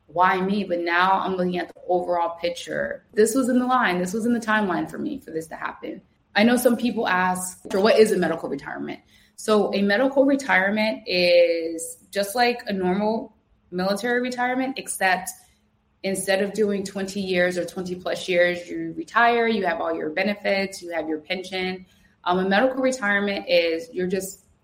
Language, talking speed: English, 185 wpm